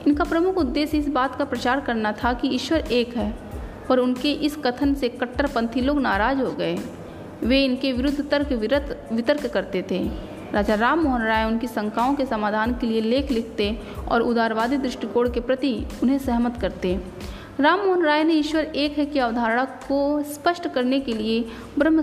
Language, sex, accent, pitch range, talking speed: Hindi, female, native, 230-285 Hz, 175 wpm